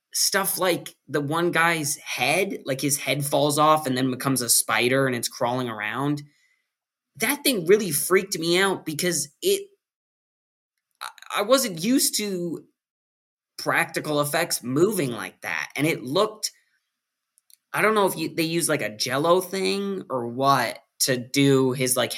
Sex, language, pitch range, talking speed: male, English, 120-160 Hz, 150 wpm